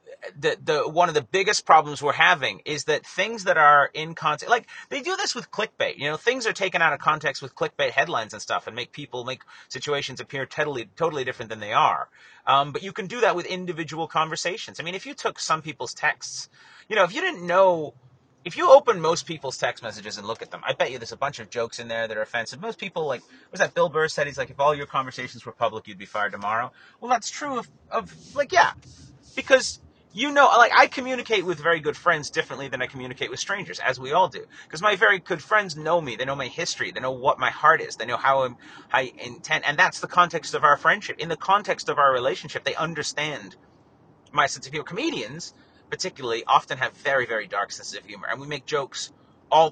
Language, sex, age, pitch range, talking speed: English, male, 30-49, 130-210 Hz, 240 wpm